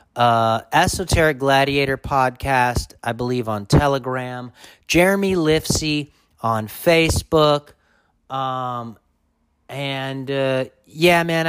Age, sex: 30-49, male